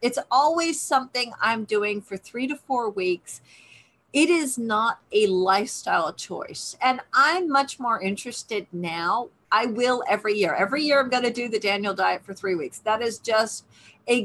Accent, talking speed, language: American, 175 wpm, English